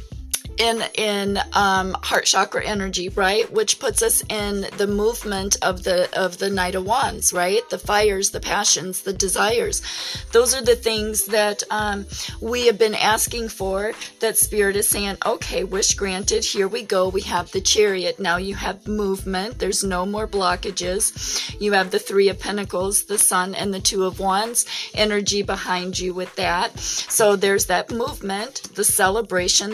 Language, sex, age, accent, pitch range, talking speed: English, female, 40-59, American, 195-215 Hz, 170 wpm